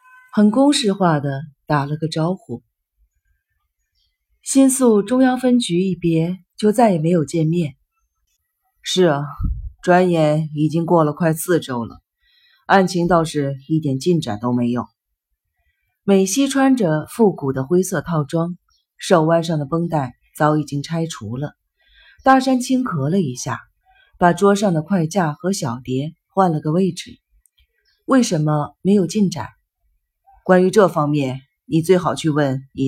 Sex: female